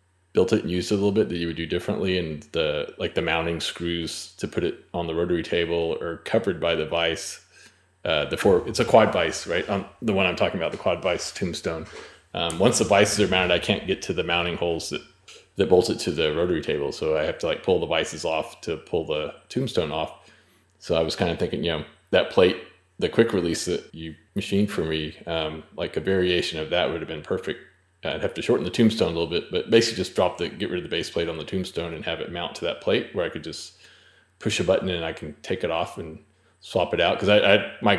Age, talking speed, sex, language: 30-49, 255 wpm, male, English